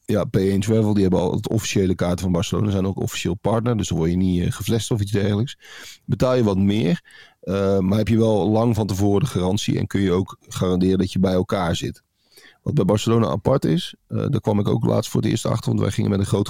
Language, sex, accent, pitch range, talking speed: Dutch, male, Dutch, 95-120 Hz, 250 wpm